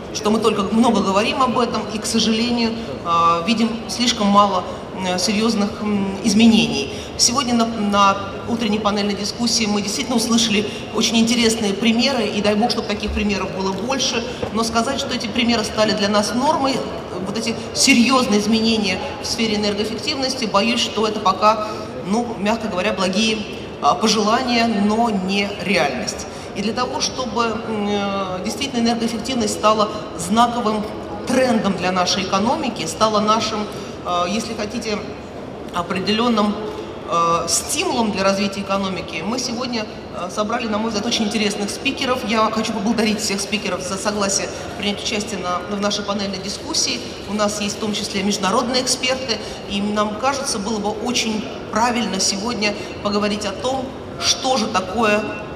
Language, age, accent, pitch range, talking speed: Russian, 30-49, native, 205-230 Hz, 140 wpm